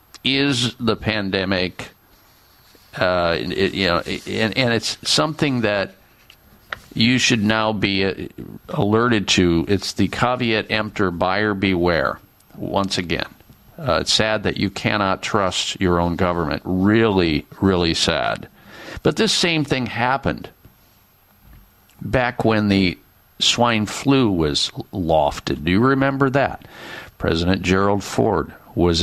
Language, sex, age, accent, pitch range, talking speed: English, male, 50-69, American, 95-125 Hz, 120 wpm